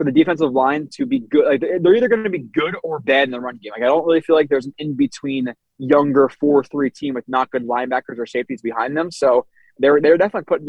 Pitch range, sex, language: 135-170 Hz, male, English